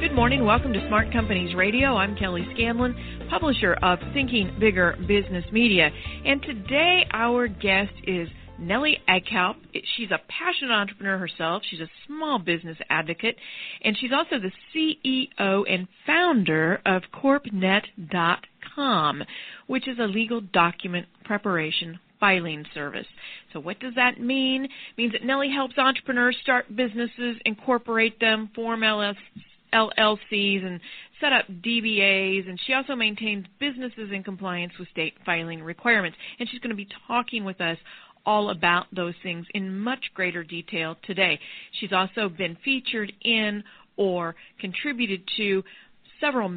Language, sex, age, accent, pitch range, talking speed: English, female, 40-59, American, 175-240 Hz, 140 wpm